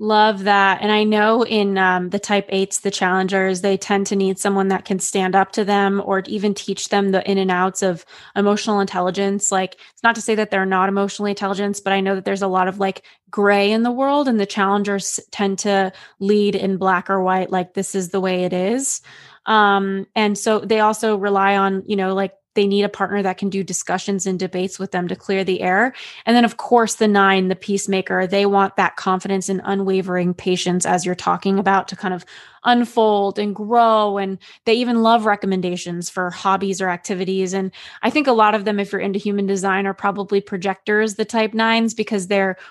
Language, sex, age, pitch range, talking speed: English, female, 20-39, 190-210 Hz, 215 wpm